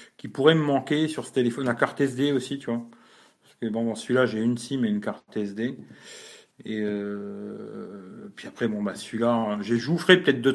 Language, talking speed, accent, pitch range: French, 215 wpm, French, 110-130 Hz